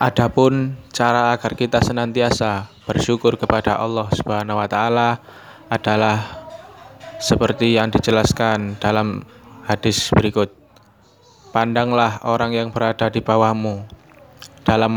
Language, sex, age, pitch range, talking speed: Indonesian, male, 20-39, 105-115 Hz, 90 wpm